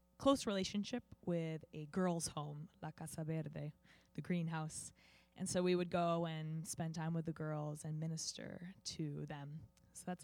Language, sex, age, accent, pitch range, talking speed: English, female, 20-39, American, 160-200 Hz, 165 wpm